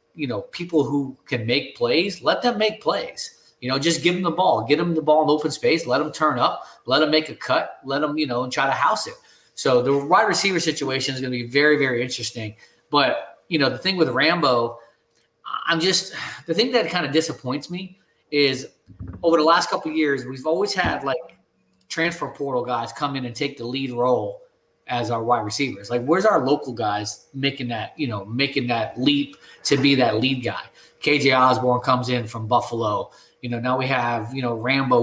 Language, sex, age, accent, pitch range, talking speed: English, male, 30-49, American, 125-160 Hz, 220 wpm